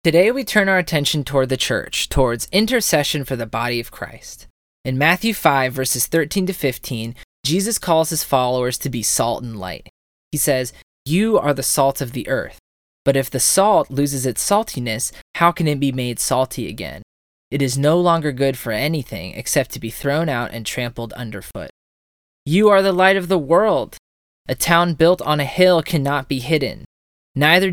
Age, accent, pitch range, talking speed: 20-39, American, 120-160 Hz, 185 wpm